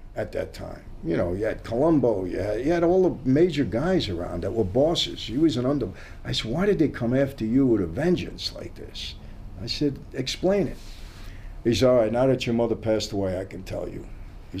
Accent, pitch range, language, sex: American, 100-125 Hz, English, male